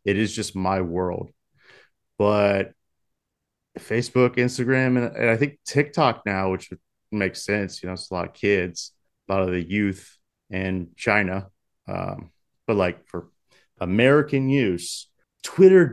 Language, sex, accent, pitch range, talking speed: English, male, American, 100-130 Hz, 145 wpm